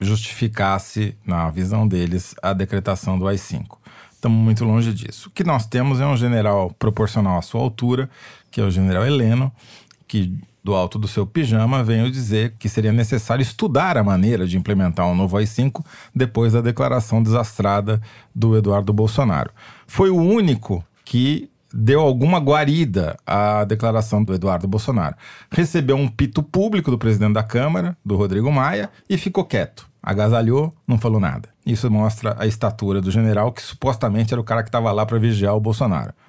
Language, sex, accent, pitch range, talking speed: Portuguese, male, Brazilian, 105-135 Hz, 170 wpm